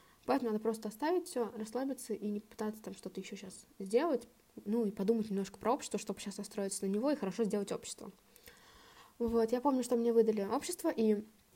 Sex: female